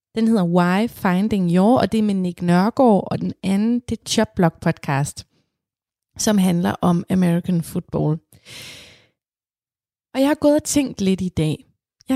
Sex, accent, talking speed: female, native, 160 wpm